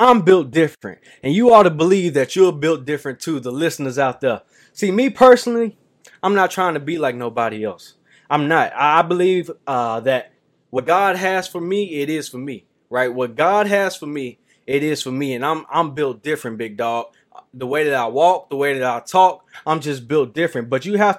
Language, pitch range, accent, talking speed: English, 135-185 Hz, American, 220 wpm